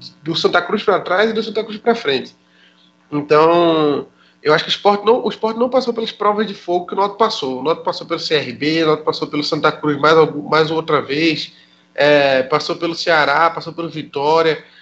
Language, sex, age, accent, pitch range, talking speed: Portuguese, male, 20-39, Brazilian, 150-210 Hz, 210 wpm